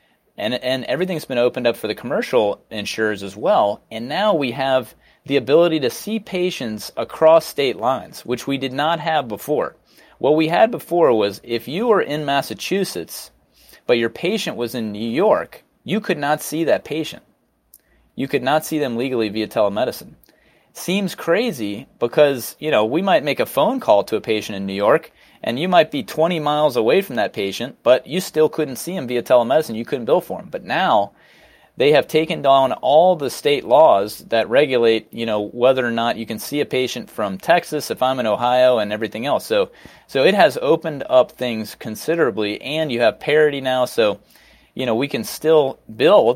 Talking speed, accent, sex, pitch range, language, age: 195 wpm, American, male, 115-155 Hz, English, 30-49